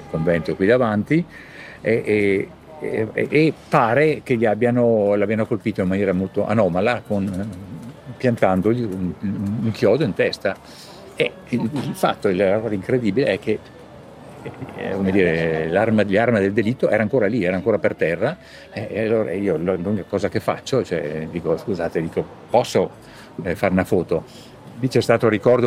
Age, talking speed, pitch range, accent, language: 50-69, 150 wpm, 95-115 Hz, native, Italian